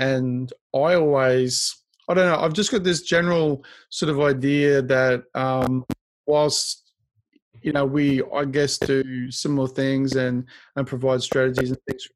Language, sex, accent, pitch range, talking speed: English, male, Australian, 130-145 Hz, 160 wpm